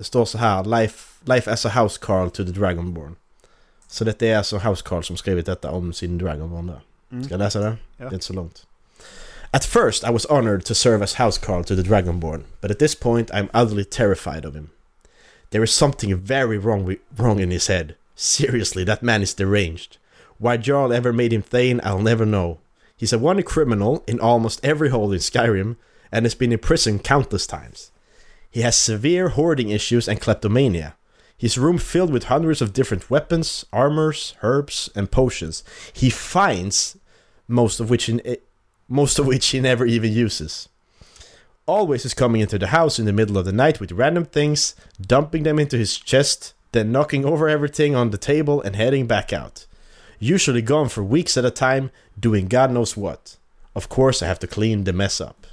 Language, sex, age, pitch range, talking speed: Swedish, male, 30-49, 100-130 Hz, 185 wpm